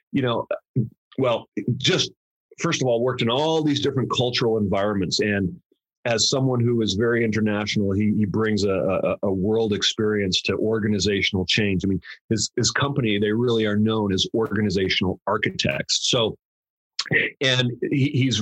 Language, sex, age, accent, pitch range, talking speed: English, male, 40-59, American, 105-125 Hz, 155 wpm